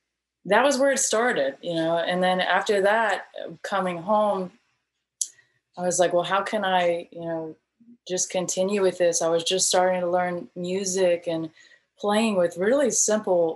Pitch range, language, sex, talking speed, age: 170-195 Hz, English, female, 170 wpm, 20-39